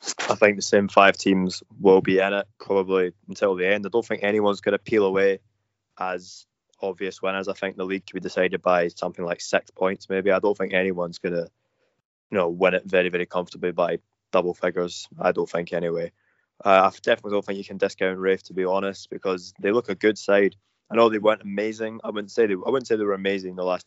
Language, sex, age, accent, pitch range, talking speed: English, male, 20-39, British, 90-100 Hz, 225 wpm